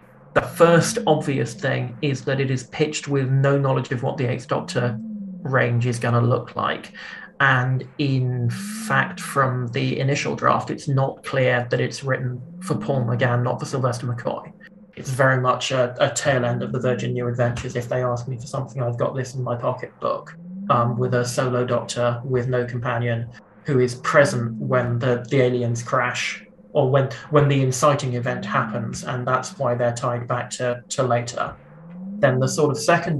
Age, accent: 30-49, British